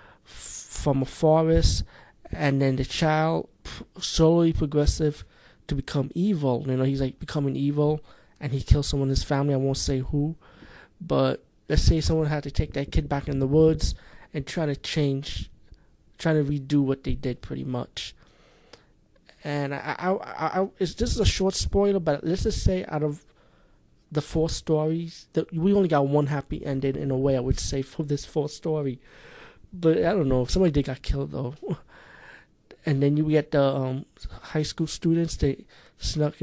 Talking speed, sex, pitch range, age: 185 wpm, male, 135-155 Hz, 20-39